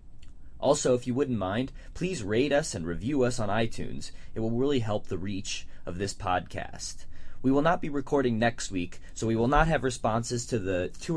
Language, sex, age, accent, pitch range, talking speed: English, male, 30-49, American, 115-170 Hz, 205 wpm